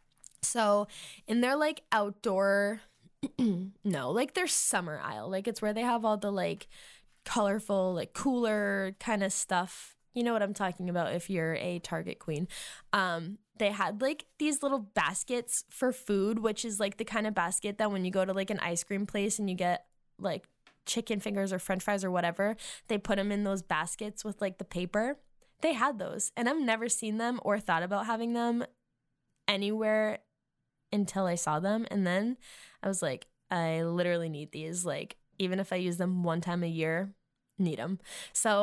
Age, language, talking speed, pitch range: 10-29, English, 190 wpm, 175-215 Hz